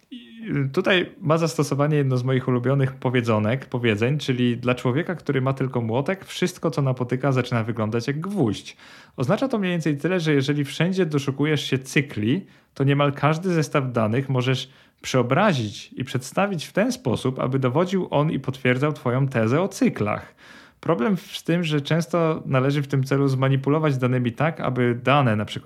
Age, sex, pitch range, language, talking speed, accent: 40-59, male, 120-150 Hz, Polish, 160 wpm, native